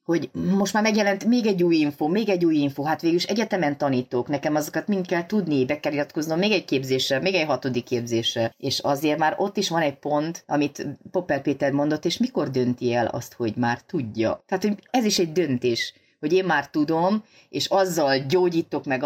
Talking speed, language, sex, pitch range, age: 200 wpm, Hungarian, female, 130-170 Hz, 30-49